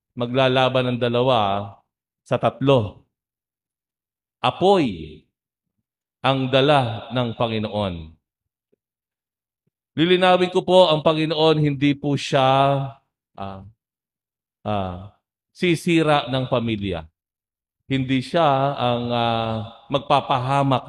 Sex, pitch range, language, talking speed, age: male, 115-155 Hz, English, 80 wpm, 50-69